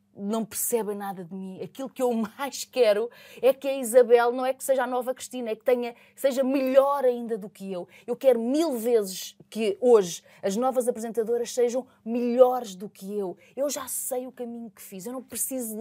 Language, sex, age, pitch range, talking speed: Portuguese, female, 20-39, 170-230 Hz, 200 wpm